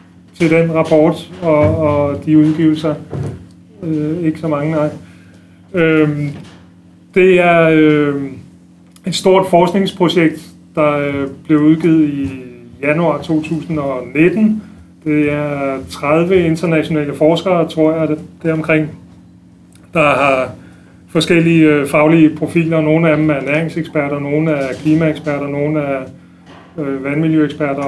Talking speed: 110 wpm